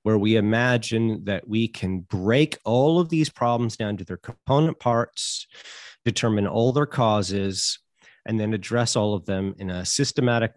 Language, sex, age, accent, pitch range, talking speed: English, male, 30-49, American, 100-125 Hz, 165 wpm